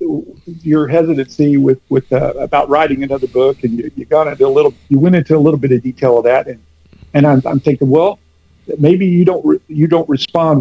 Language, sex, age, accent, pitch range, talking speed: English, male, 50-69, American, 130-170 Hz, 220 wpm